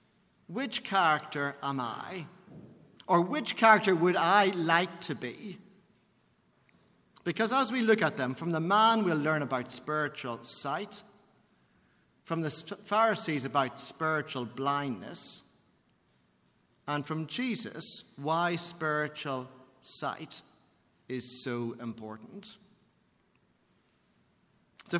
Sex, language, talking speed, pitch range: male, English, 100 wpm, 135-200 Hz